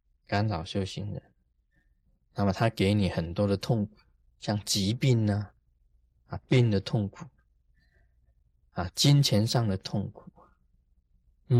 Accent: native